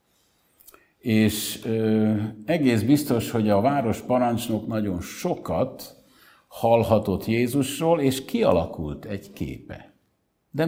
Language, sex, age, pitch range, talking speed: Hungarian, male, 60-79, 95-120 Hz, 90 wpm